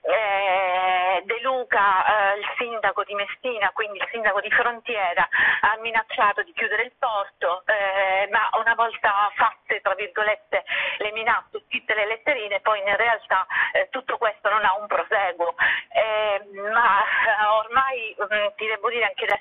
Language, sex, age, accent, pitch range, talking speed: Italian, female, 40-59, native, 200-230 Hz, 155 wpm